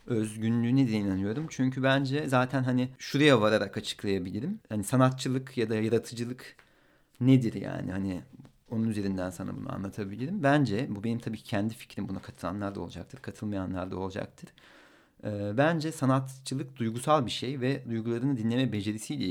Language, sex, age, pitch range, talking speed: Turkish, male, 40-59, 105-130 Hz, 145 wpm